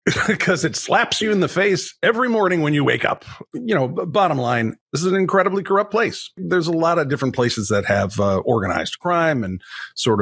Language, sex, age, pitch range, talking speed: English, male, 40-59, 105-145 Hz, 210 wpm